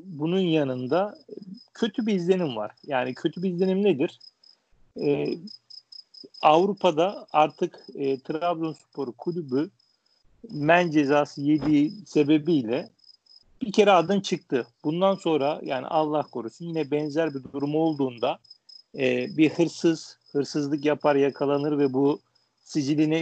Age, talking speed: 40-59, 115 wpm